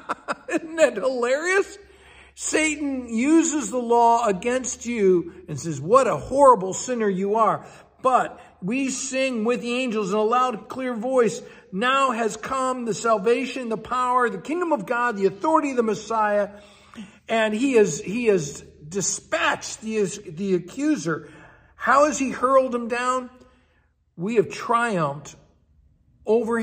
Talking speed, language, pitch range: 140 wpm, English, 190-245 Hz